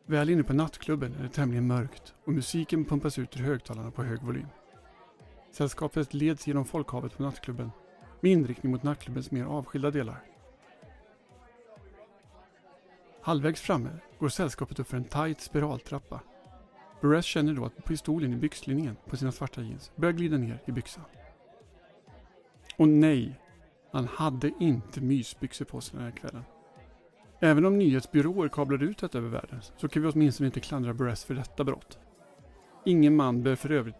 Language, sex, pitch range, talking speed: Swedish, male, 130-155 Hz, 155 wpm